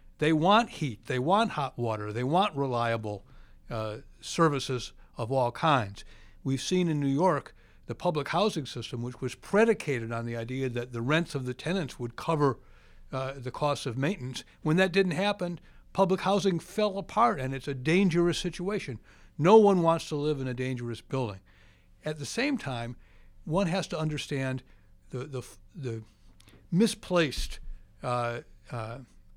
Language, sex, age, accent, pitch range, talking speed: English, male, 60-79, American, 120-180 Hz, 160 wpm